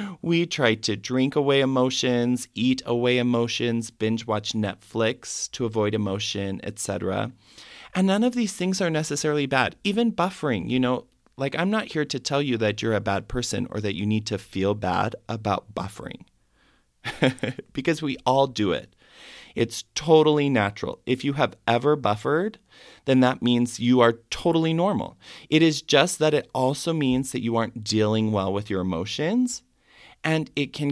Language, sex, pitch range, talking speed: English, male, 105-145 Hz, 170 wpm